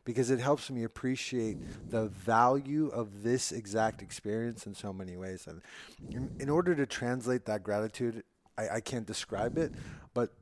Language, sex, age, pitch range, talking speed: English, male, 30-49, 110-140 Hz, 160 wpm